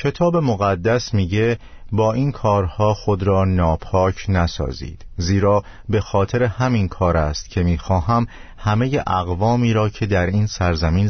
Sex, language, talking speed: male, Persian, 135 wpm